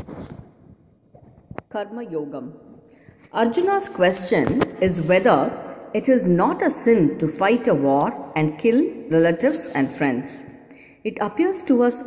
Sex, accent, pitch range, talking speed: female, Indian, 170-275 Hz, 120 wpm